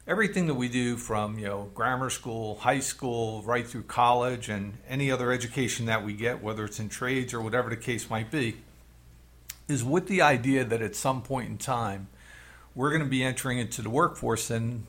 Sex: male